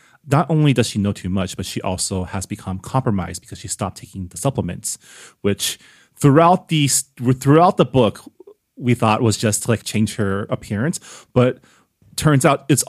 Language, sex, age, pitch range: English, male, 30-49, 95-130 Hz